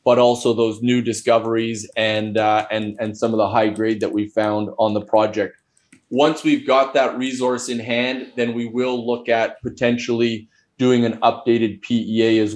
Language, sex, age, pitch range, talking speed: English, male, 20-39, 110-120 Hz, 180 wpm